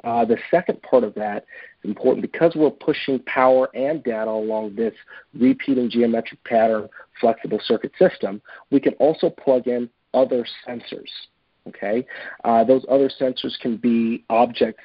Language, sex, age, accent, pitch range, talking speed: English, male, 40-59, American, 115-135 Hz, 150 wpm